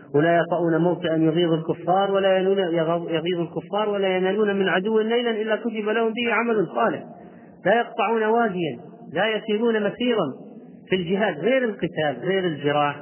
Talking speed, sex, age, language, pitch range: 145 wpm, male, 40-59, Arabic, 155-205 Hz